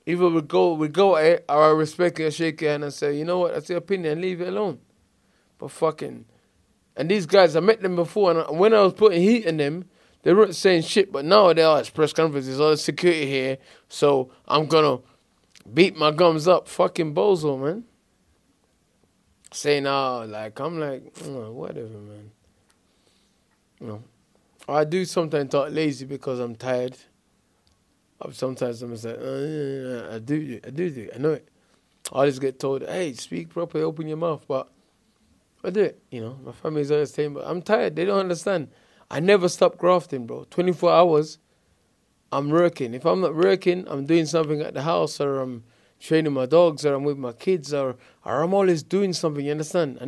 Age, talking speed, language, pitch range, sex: 20-39, 200 wpm, English, 135-175 Hz, male